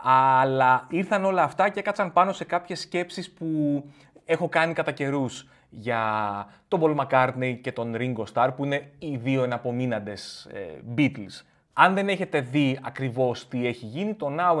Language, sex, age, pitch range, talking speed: Greek, male, 30-49, 120-165 Hz, 165 wpm